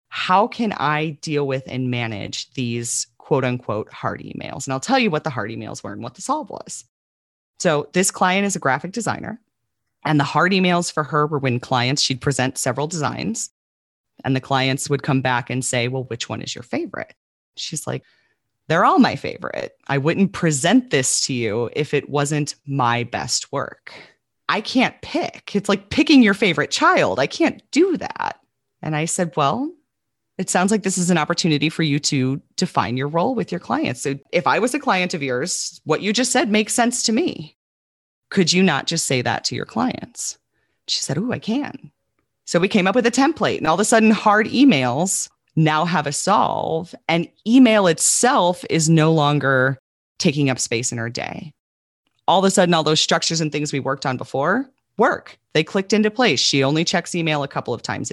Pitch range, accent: 130-190 Hz, American